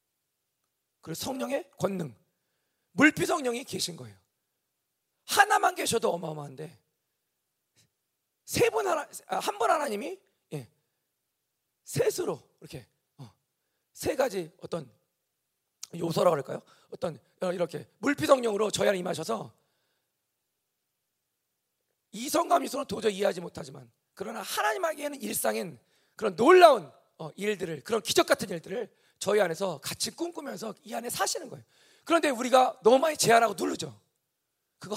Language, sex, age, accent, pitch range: Korean, male, 40-59, native, 160-270 Hz